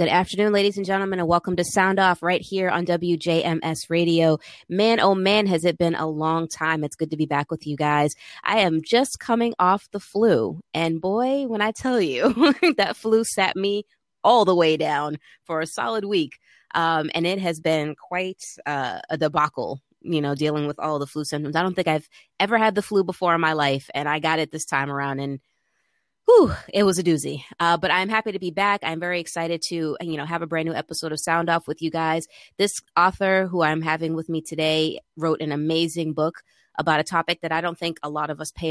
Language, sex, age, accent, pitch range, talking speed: English, female, 20-39, American, 155-180 Hz, 235 wpm